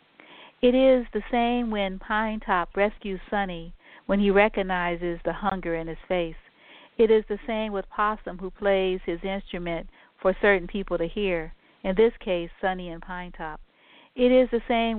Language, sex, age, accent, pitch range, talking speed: English, female, 50-69, American, 180-210 Hz, 170 wpm